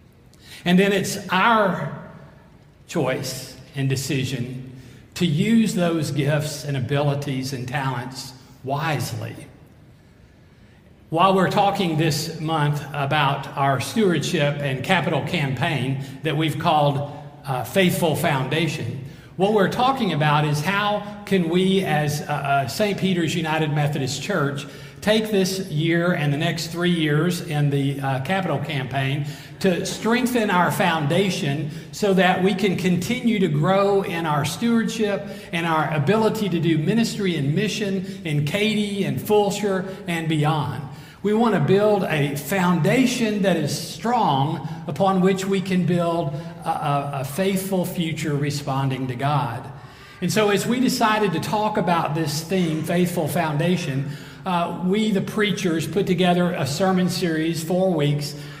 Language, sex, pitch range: English, male, 145-190 Hz